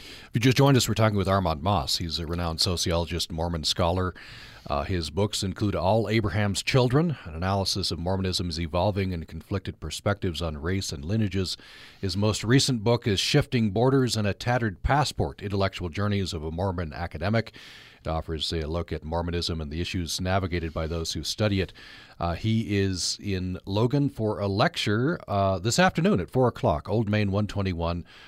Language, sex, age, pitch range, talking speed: English, male, 40-59, 85-110 Hz, 180 wpm